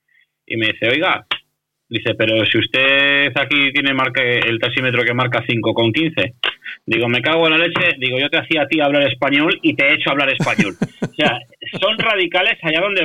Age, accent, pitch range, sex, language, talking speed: 30-49, Spanish, 120-160 Hz, male, Spanish, 200 wpm